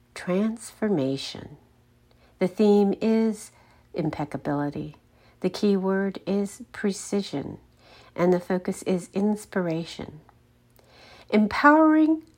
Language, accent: English, American